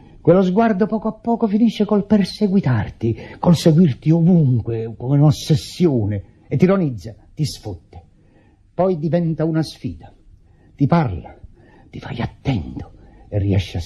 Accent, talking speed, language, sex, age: native, 130 wpm, Italian, male, 50-69